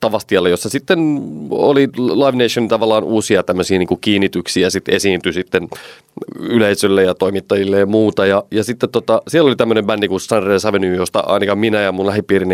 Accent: native